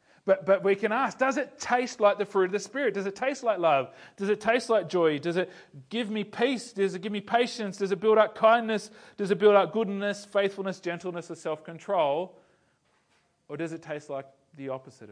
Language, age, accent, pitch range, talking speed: English, 30-49, Australian, 160-225 Hz, 220 wpm